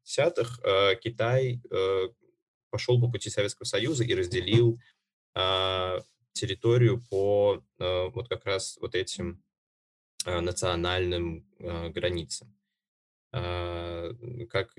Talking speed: 75 wpm